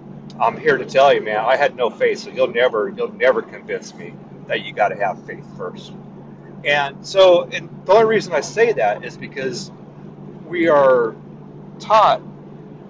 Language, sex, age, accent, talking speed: English, male, 40-59, American, 175 wpm